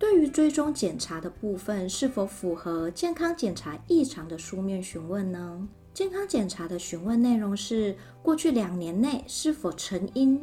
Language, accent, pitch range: Chinese, American, 175-265 Hz